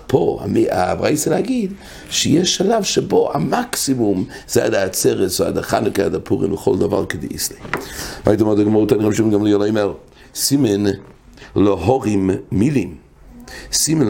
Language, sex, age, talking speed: English, male, 60-79, 130 wpm